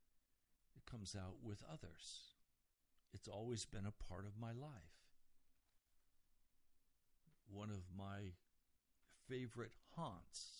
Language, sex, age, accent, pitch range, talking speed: English, male, 60-79, American, 85-130 Hz, 95 wpm